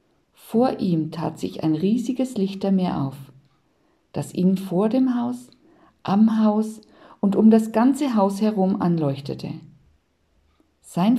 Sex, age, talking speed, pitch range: female, 50-69, 125 wpm, 155-215 Hz